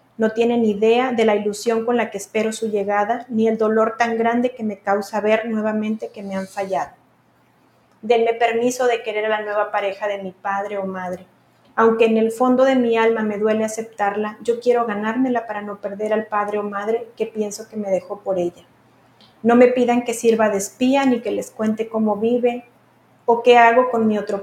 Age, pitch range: 30-49, 205-230 Hz